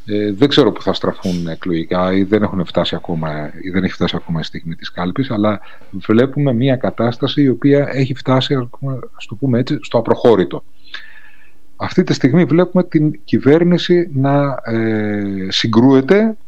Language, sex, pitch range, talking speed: Greek, male, 100-140 Hz, 135 wpm